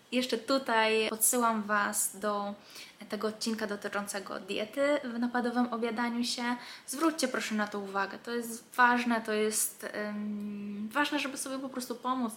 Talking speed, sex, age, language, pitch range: 145 wpm, female, 20-39, Polish, 210-240 Hz